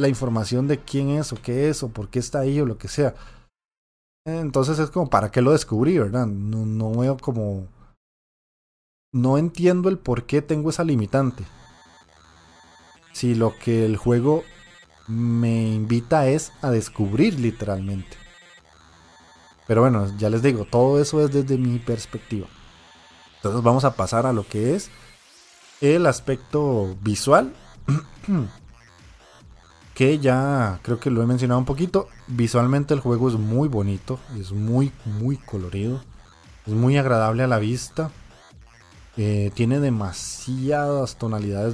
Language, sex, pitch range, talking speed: Spanish, male, 105-135 Hz, 140 wpm